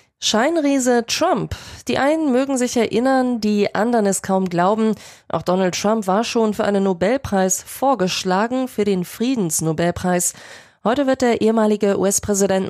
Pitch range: 190-225 Hz